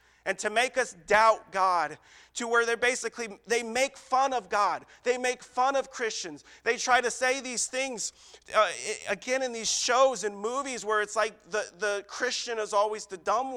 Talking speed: 190 wpm